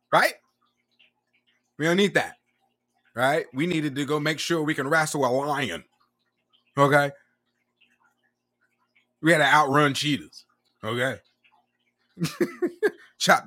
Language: English